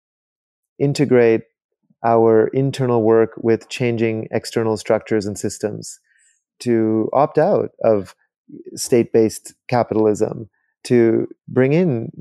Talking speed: 95 wpm